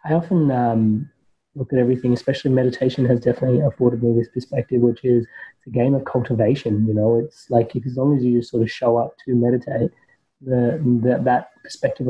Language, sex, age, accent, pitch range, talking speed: English, male, 20-39, Australian, 120-130 Hz, 185 wpm